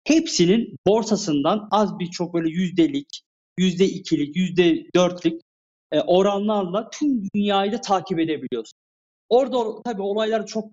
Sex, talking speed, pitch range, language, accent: male, 115 wpm, 145-205 Hz, Turkish, native